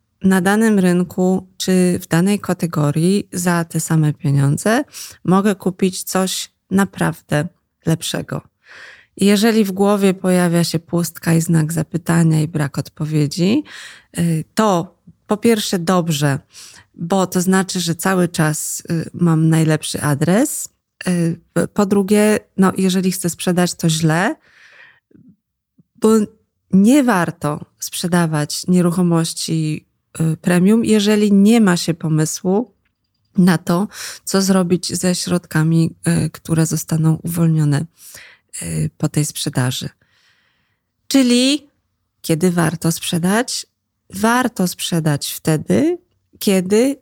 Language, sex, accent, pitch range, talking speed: Polish, female, native, 160-195 Hz, 100 wpm